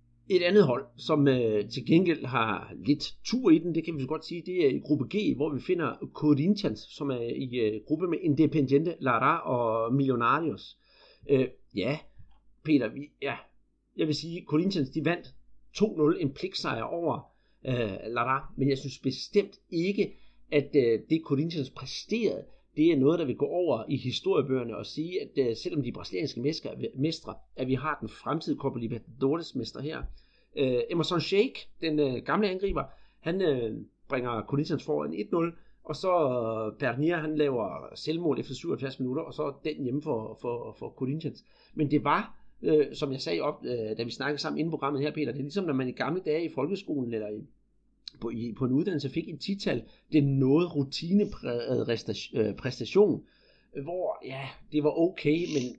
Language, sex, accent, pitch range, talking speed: Danish, male, native, 130-165 Hz, 185 wpm